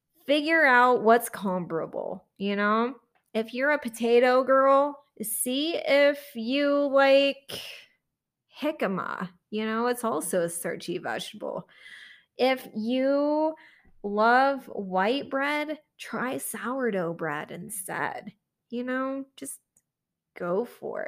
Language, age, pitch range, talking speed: English, 20-39, 195-265 Hz, 105 wpm